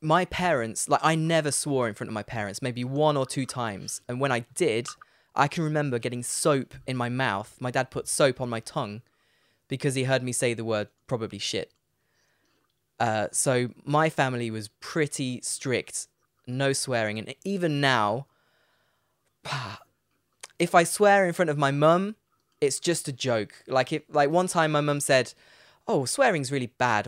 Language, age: English, 20-39